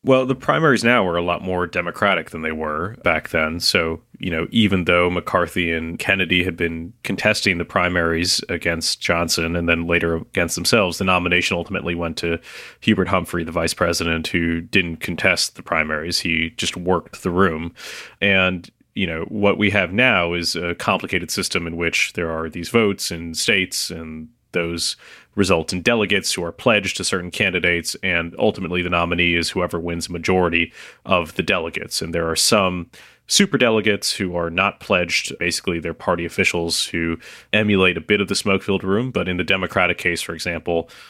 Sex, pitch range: male, 85-95 Hz